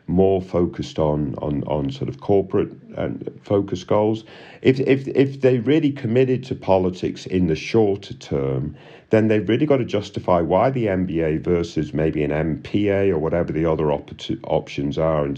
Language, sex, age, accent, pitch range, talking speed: English, male, 50-69, British, 80-115 Hz, 170 wpm